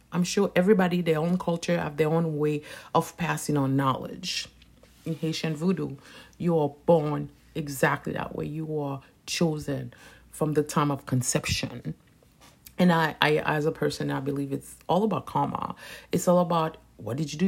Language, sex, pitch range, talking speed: English, female, 145-175 Hz, 170 wpm